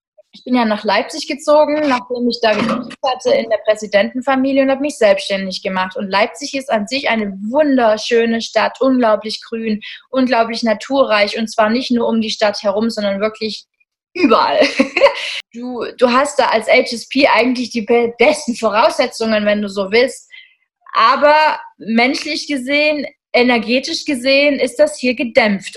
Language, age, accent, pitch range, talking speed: German, 20-39, German, 220-290 Hz, 150 wpm